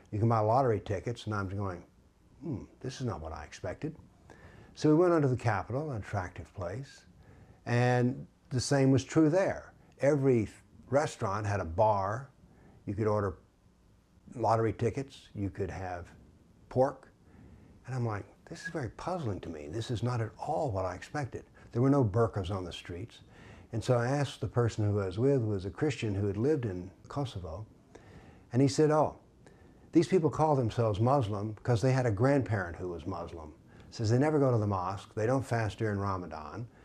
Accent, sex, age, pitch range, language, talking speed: American, male, 60-79, 100-130 Hz, English, 190 wpm